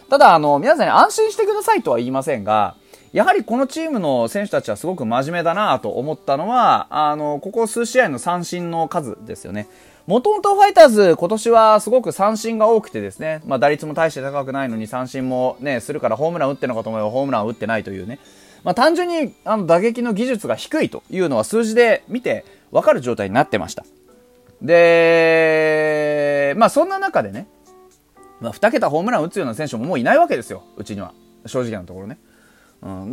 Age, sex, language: 20-39, male, Japanese